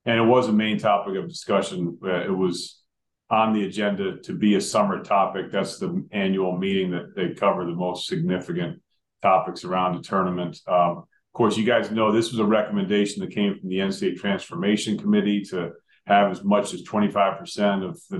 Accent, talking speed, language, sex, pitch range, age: American, 190 wpm, English, male, 95-105 Hz, 40-59